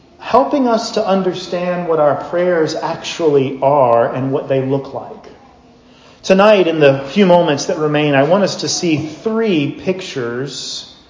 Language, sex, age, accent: English, male, 40-59, American